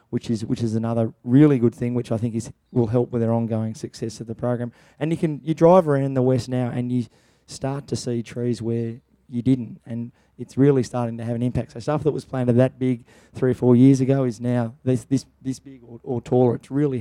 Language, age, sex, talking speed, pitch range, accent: English, 20-39, male, 250 wpm, 120-145 Hz, Australian